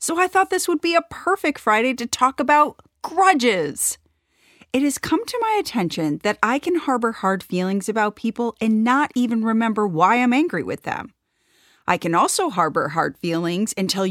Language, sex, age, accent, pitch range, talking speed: English, female, 30-49, American, 180-255 Hz, 185 wpm